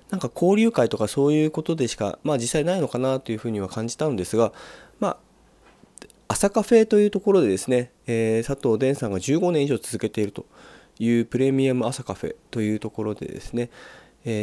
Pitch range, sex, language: 105-155 Hz, male, Japanese